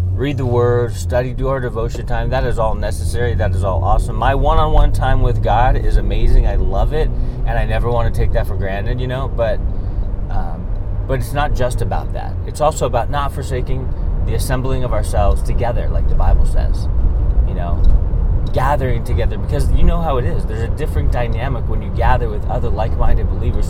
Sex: male